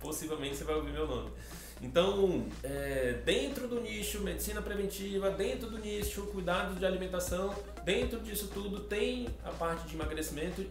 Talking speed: 150 wpm